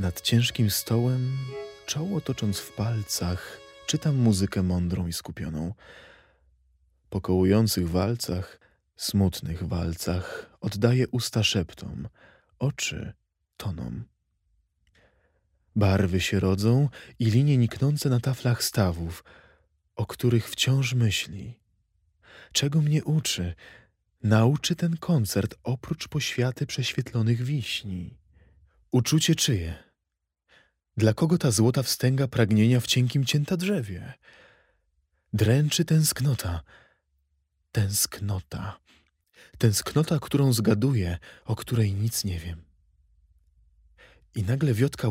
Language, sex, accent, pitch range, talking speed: Polish, male, native, 85-130 Hz, 95 wpm